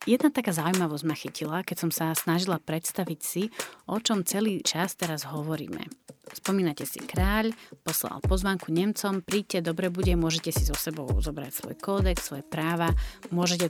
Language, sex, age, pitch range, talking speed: Slovak, female, 30-49, 165-205 Hz, 160 wpm